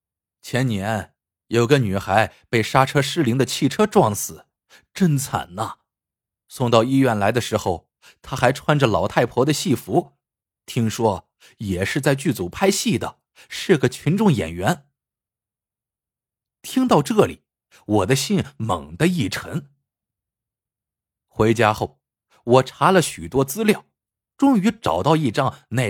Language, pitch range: Chinese, 110-170 Hz